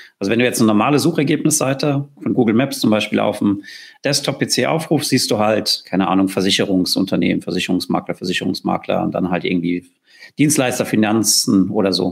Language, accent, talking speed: German, German, 165 wpm